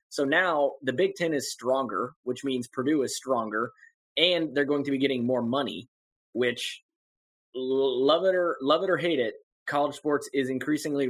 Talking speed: 180 wpm